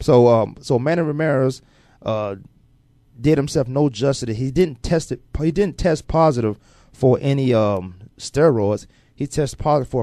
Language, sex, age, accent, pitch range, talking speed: English, male, 30-49, American, 115-150 Hz, 155 wpm